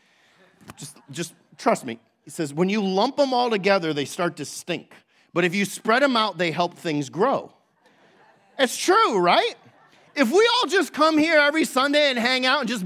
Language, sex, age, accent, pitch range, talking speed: English, male, 40-59, American, 150-205 Hz, 195 wpm